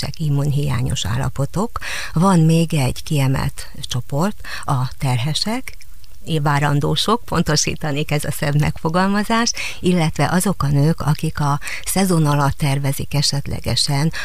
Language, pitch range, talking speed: Hungarian, 135-160 Hz, 105 wpm